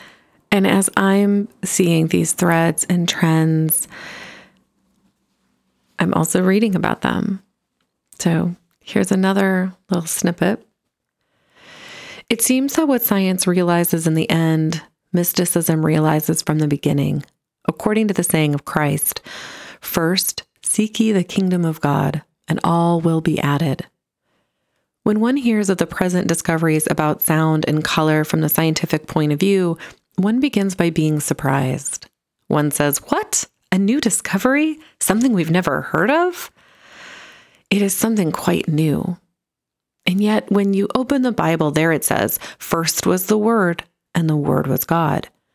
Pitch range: 155-195 Hz